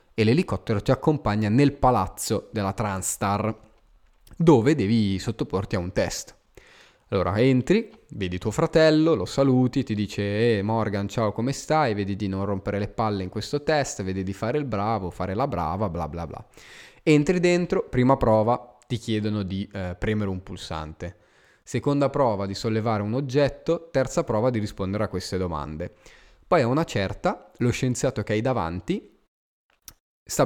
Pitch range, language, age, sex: 100-135 Hz, Italian, 20-39, male